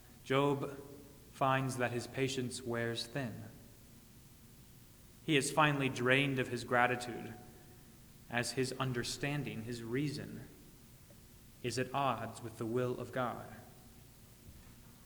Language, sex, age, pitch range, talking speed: English, male, 30-49, 120-140 Hz, 110 wpm